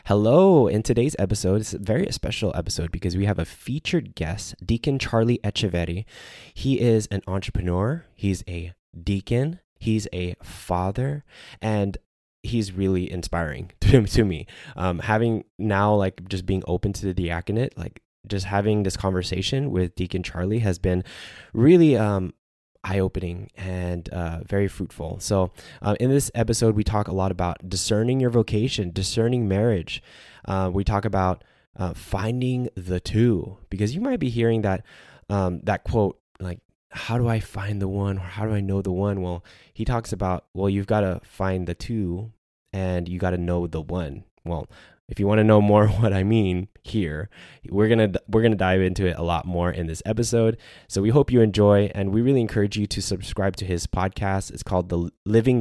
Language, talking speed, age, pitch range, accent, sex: English, 180 wpm, 10-29, 90-110 Hz, American, male